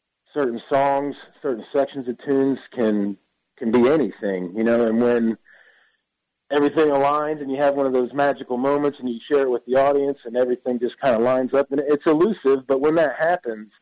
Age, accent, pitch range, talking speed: 40-59, American, 115-145 Hz, 195 wpm